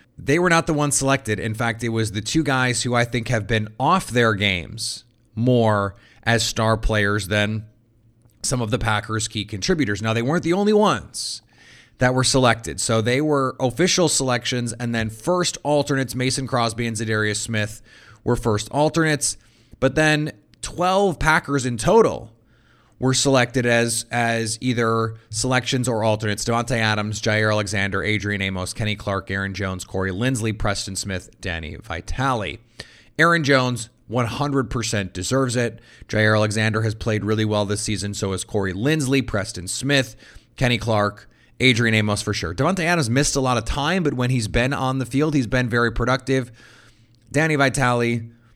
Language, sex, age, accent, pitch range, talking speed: English, male, 30-49, American, 110-130 Hz, 165 wpm